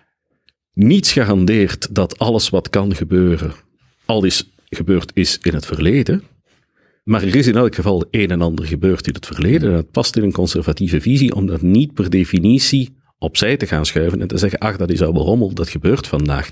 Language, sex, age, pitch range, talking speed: Dutch, male, 50-69, 85-110 Hz, 200 wpm